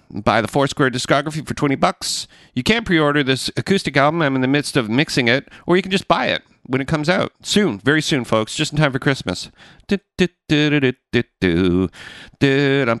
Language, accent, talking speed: English, American, 190 wpm